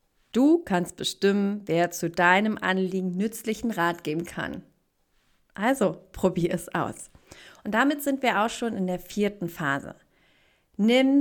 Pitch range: 185-230 Hz